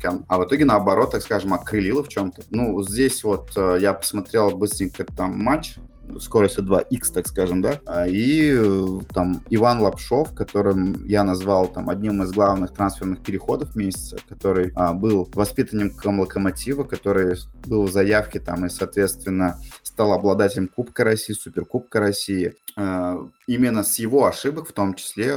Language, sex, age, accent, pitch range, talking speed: Russian, male, 20-39, native, 95-115 Hz, 150 wpm